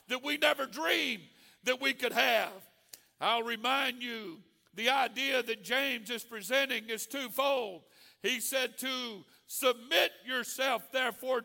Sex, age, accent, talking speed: male, 60-79, American, 130 wpm